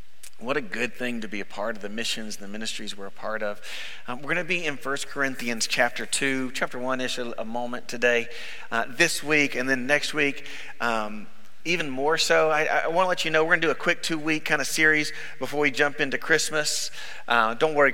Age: 40-59